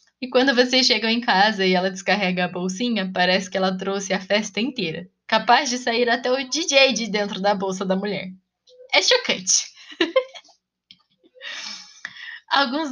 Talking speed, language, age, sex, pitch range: 155 wpm, Portuguese, 10-29, female, 195-265 Hz